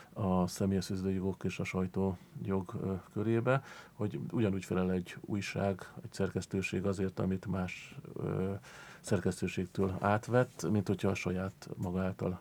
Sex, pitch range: male, 95-105 Hz